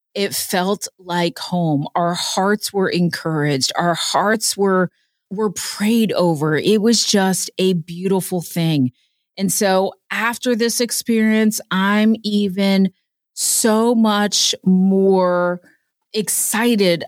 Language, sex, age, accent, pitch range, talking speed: English, female, 30-49, American, 185-235 Hz, 110 wpm